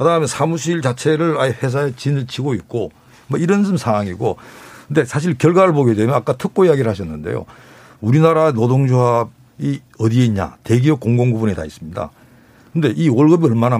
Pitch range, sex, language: 125-175 Hz, male, Korean